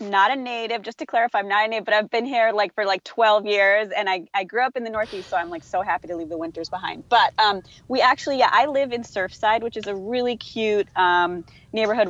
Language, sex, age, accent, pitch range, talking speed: English, female, 30-49, American, 170-245 Hz, 265 wpm